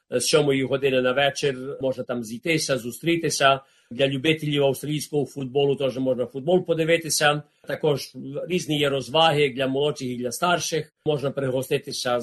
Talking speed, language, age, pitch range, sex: 135 wpm, Ukrainian, 40-59, 125-145 Hz, male